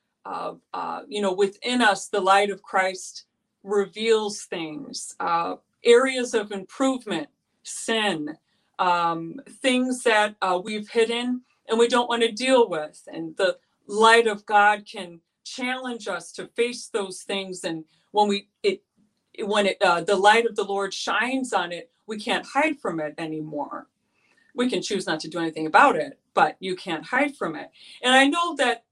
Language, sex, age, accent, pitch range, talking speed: English, female, 40-59, American, 185-240 Hz, 170 wpm